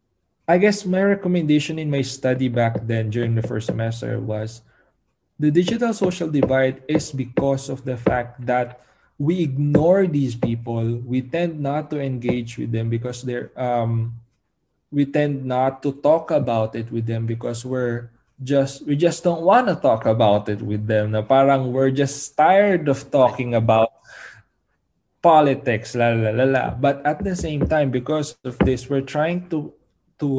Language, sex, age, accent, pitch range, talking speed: Filipino, male, 20-39, native, 125-155 Hz, 170 wpm